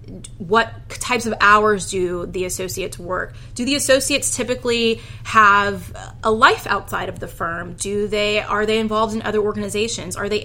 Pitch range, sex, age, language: 185-225 Hz, female, 20-39, English